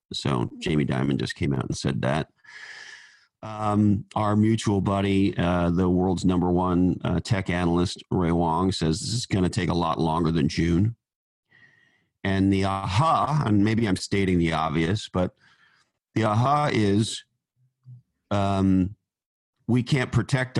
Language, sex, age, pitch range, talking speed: English, male, 40-59, 90-110 Hz, 150 wpm